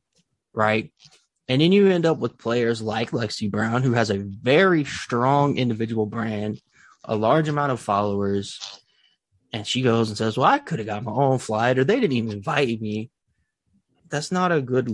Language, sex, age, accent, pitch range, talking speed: English, male, 20-39, American, 110-135 Hz, 185 wpm